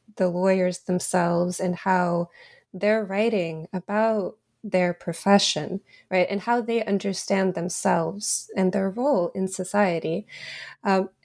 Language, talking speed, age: English, 115 wpm, 20-39